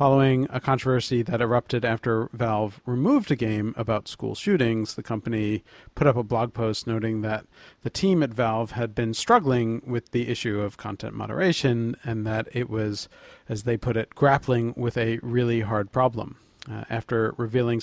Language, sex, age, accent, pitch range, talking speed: English, male, 40-59, American, 110-130 Hz, 175 wpm